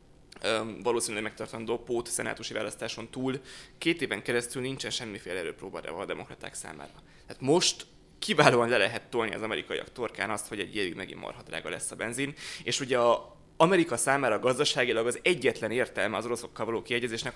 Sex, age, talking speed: male, 20-39, 160 wpm